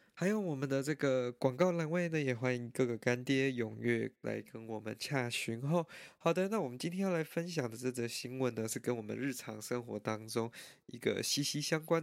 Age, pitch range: 20-39, 115-135 Hz